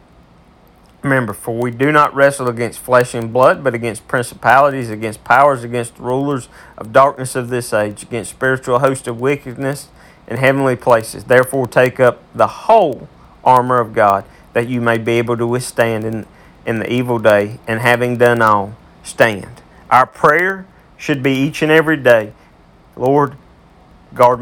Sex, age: male, 40-59